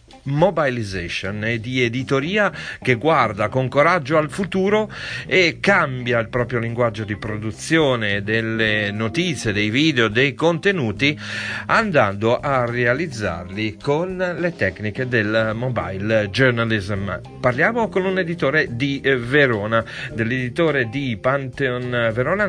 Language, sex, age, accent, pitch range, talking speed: Italian, male, 40-59, native, 110-140 Hz, 110 wpm